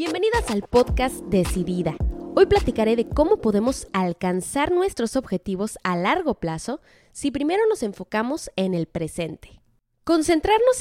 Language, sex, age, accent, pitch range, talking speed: Spanish, female, 20-39, Mexican, 195-300 Hz, 130 wpm